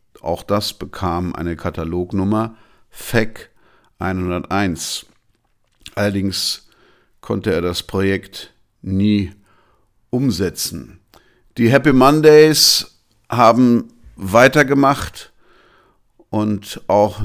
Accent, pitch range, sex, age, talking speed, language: German, 95-115 Hz, male, 50-69, 75 wpm, German